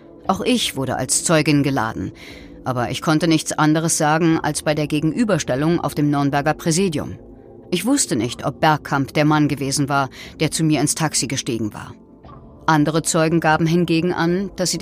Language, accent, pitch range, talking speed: German, German, 145-185 Hz, 175 wpm